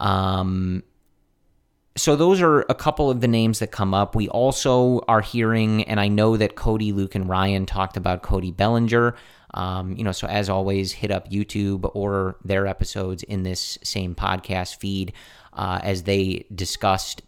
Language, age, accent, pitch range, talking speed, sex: English, 30-49, American, 95-115 Hz, 170 wpm, male